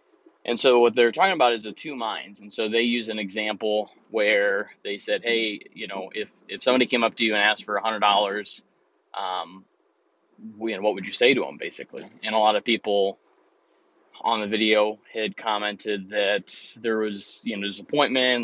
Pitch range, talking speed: 105-125 Hz, 195 wpm